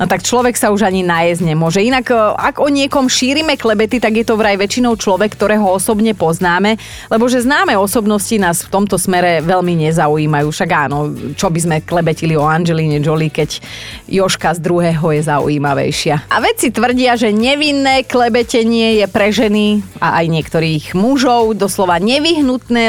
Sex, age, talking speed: female, 30-49, 165 wpm